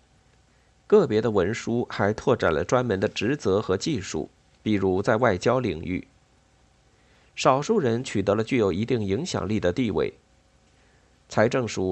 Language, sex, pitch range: Chinese, male, 100-130 Hz